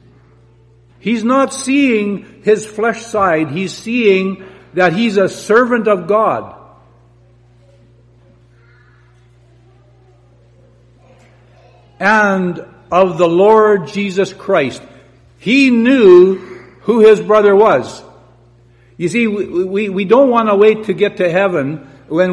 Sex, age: male, 60-79